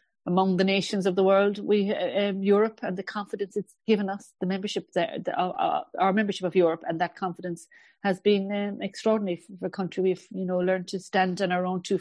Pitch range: 180-215 Hz